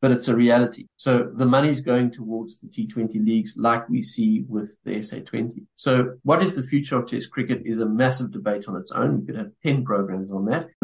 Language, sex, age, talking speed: English, male, 50-69, 220 wpm